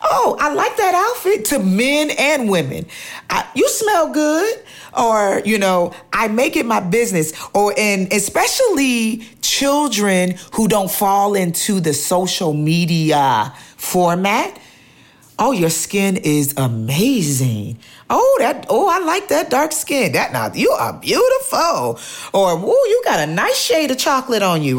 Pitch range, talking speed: 160-240 Hz, 150 wpm